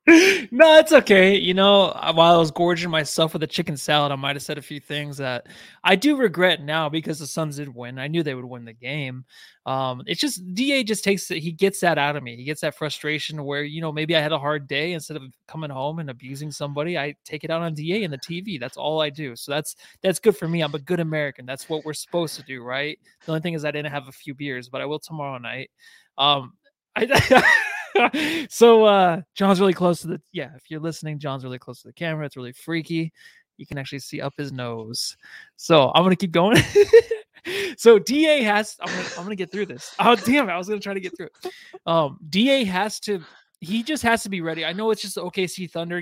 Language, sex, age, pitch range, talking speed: English, male, 20-39, 145-205 Hz, 245 wpm